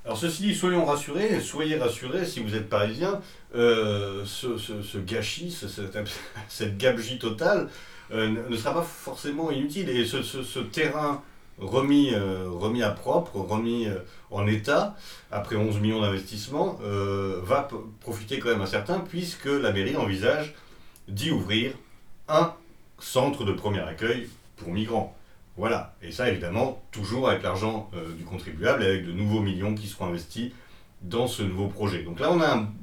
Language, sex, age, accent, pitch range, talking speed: French, male, 40-59, French, 100-145 Hz, 160 wpm